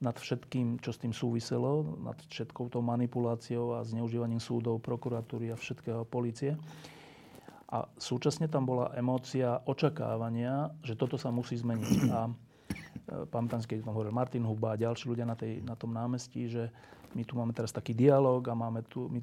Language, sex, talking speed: Slovak, male, 165 wpm